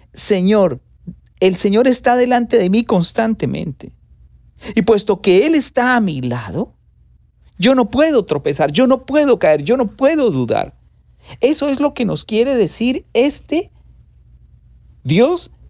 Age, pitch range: 50-69, 170-260 Hz